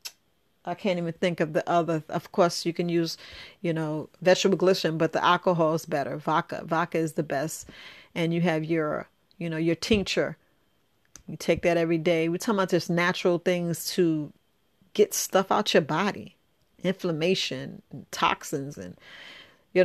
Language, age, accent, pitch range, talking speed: English, 40-59, American, 165-185 Hz, 165 wpm